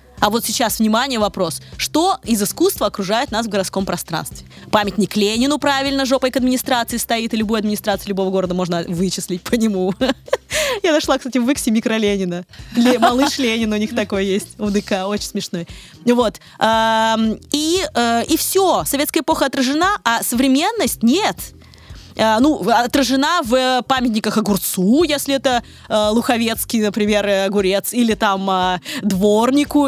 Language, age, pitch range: Russian, 20-39, 205-275 Hz